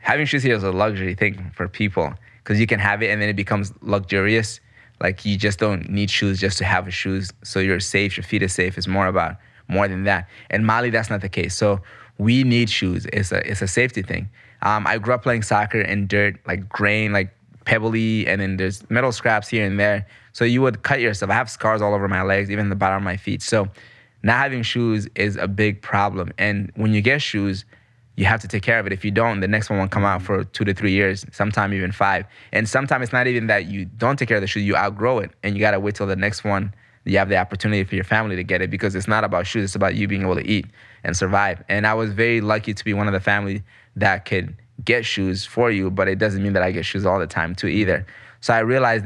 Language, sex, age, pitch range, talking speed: English, male, 20-39, 95-115 Hz, 265 wpm